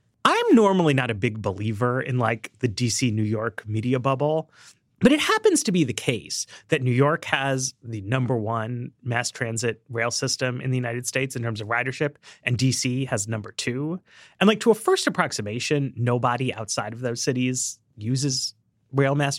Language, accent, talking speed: English, American, 185 wpm